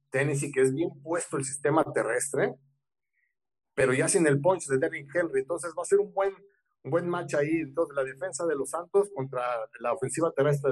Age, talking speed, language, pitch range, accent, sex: 50-69, 200 wpm, Spanish, 135-175 Hz, Mexican, male